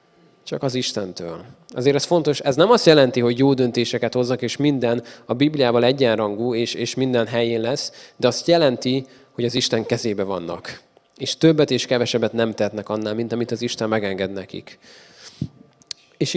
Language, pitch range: Hungarian, 120-145 Hz